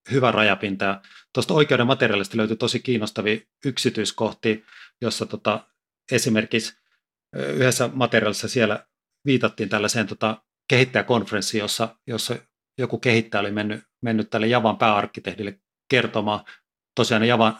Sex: male